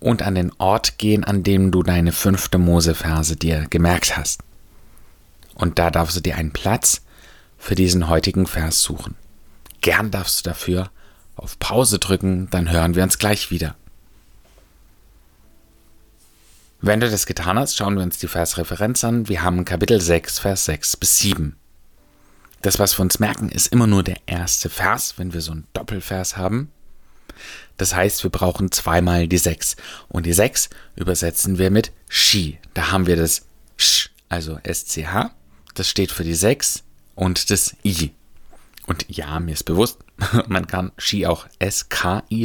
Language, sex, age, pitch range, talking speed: German, male, 30-49, 80-100 Hz, 160 wpm